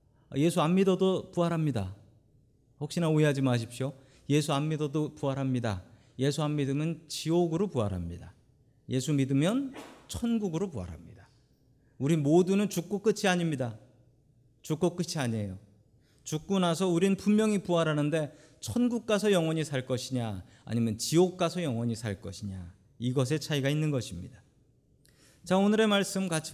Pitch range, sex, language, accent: 120-170 Hz, male, Korean, native